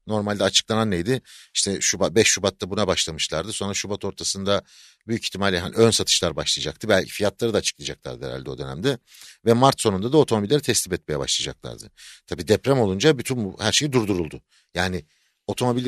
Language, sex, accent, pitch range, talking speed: Turkish, male, native, 95-130 Hz, 165 wpm